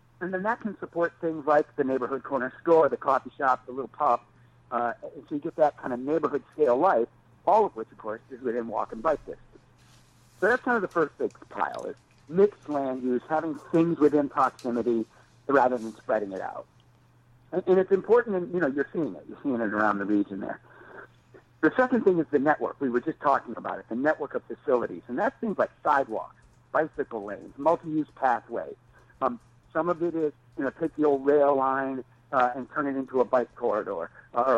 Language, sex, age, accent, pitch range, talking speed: English, male, 60-79, American, 120-155 Hz, 205 wpm